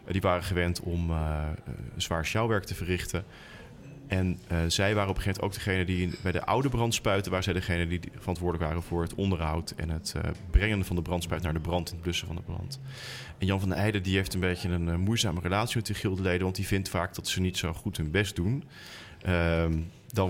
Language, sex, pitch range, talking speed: Dutch, male, 85-100 Hz, 230 wpm